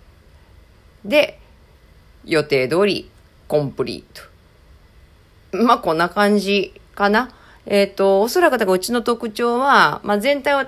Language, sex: Japanese, female